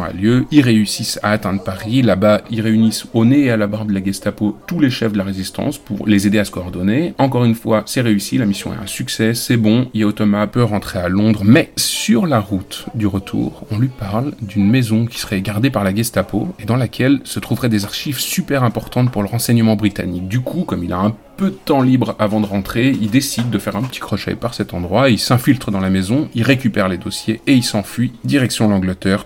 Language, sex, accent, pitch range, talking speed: French, male, French, 100-120 Hz, 235 wpm